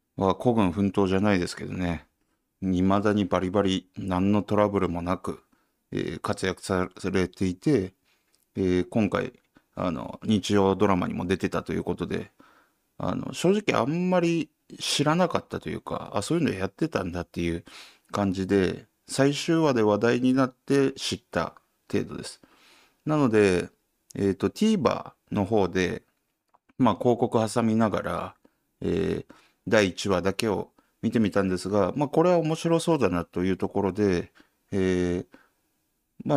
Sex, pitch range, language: male, 90-130 Hz, Japanese